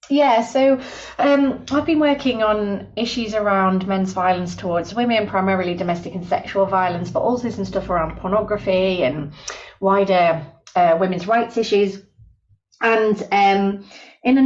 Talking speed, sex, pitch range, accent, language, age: 140 wpm, female, 170-215 Hz, British, English, 30-49